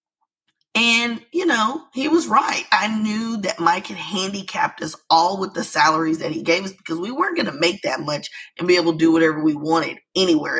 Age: 20-39